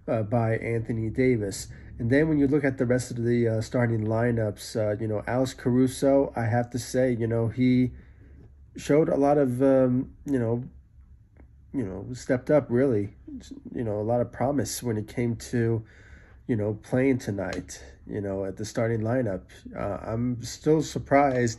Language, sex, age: English, male, 30-49